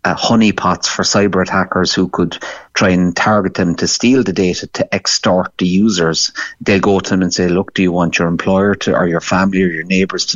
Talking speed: 220 wpm